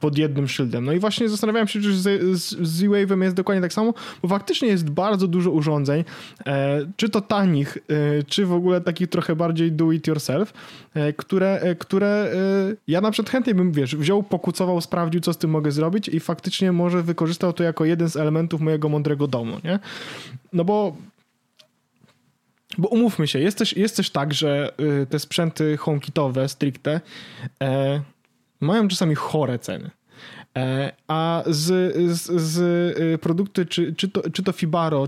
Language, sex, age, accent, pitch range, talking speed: Polish, male, 20-39, native, 150-195 Hz, 170 wpm